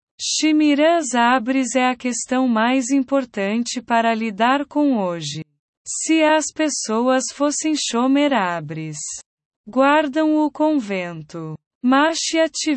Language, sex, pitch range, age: Portuguese, female, 205-290 Hz, 20-39